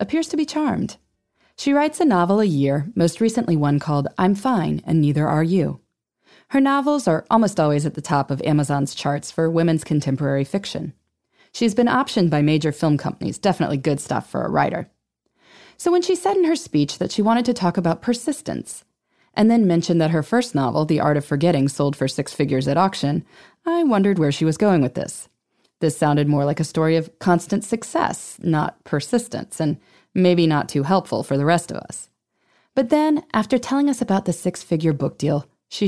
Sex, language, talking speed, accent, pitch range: female, English, 200 wpm, American, 150-235 Hz